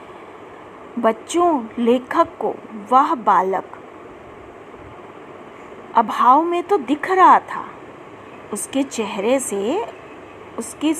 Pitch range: 245-385 Hz